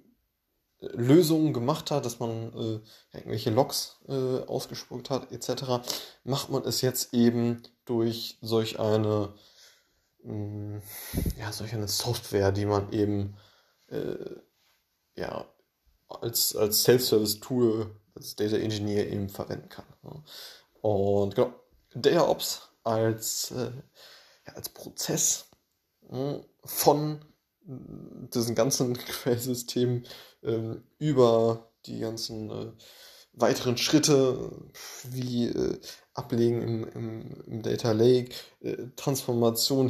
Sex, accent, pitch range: male, German, 110-125 Hz